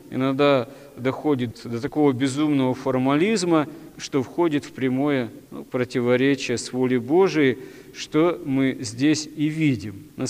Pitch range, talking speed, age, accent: 130-155 Hz, 120 wpm, 40-59, native